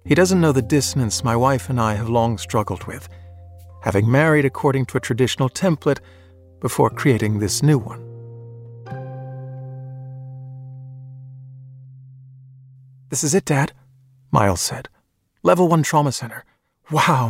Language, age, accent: English, 50-69, American